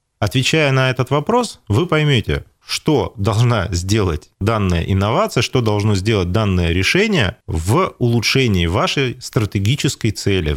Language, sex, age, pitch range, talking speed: Russian, male, 30-49, 100-125 Hz, 120 wpm